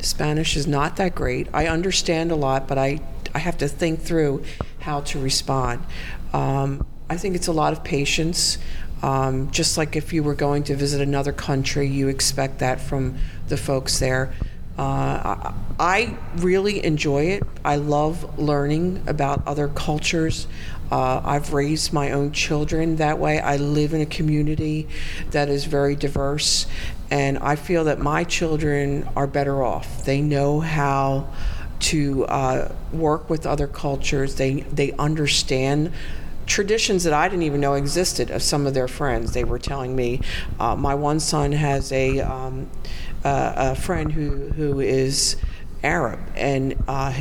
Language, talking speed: English, 160 wpm